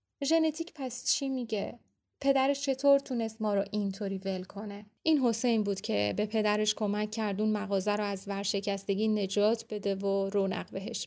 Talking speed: 165 wpm